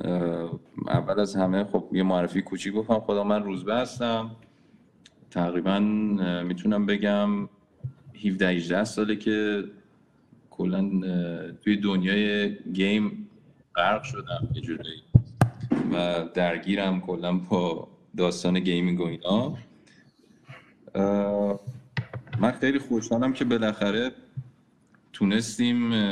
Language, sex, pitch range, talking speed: Persian, male, 90-110 Hz, 85 wpm